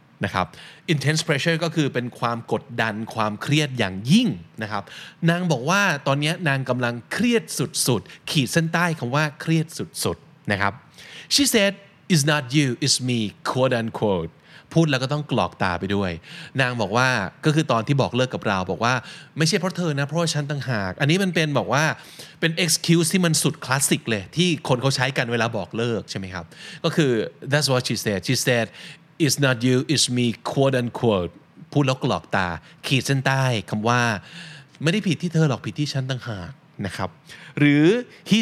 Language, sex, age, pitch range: Thai, male, 20-39, 120-165 Hz